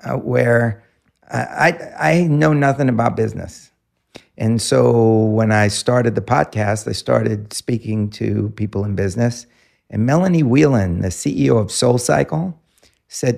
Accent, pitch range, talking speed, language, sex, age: American, 110-160 Hz, 140 wpm, English, male, 50-69